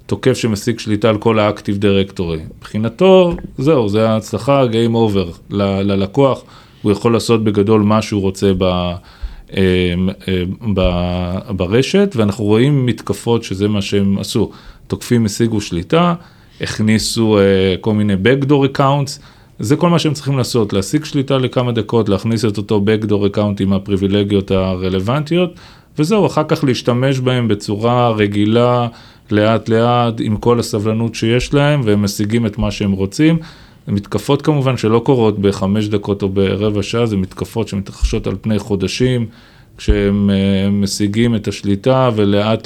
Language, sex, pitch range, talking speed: Hebrew, male, 100-120 Hz, 140 wpm